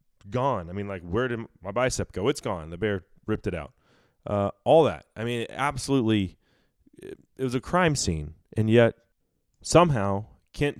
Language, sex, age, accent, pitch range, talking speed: English, male, 30-49, American, 90-115 Hz, 180 wpm